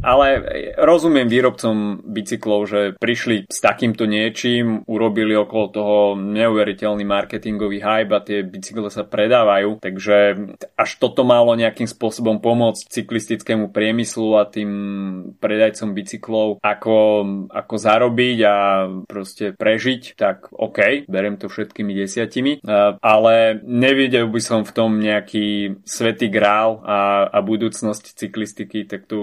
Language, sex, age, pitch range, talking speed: Slovak, male, 20-39, 105-115 Hz, 125 wpm